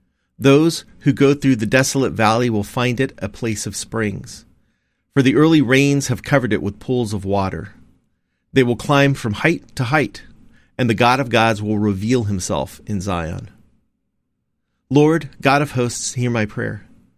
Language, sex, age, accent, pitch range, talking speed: English, male, 40-59, American, 100-130 Hz, 170 wpm